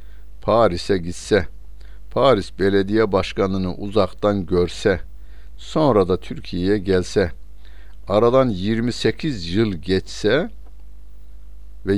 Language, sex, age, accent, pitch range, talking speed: Turkish, male, 60-79, native, 95-110 Hz, 80 wpm